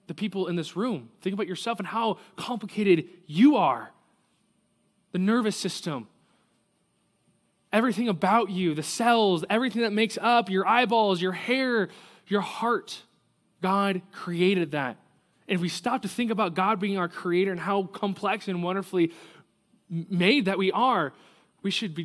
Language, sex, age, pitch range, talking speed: English, male, 20-39, 165-200 Hz, 155 wpm